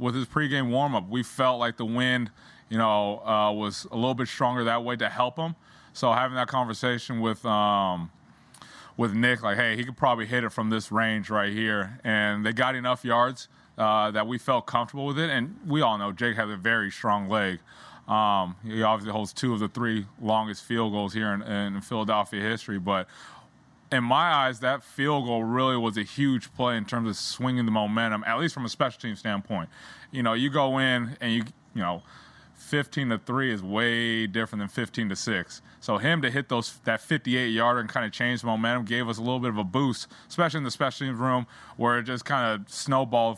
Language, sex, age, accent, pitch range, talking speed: English, male, 20-39, American, 110-125 Hz, 220 wpm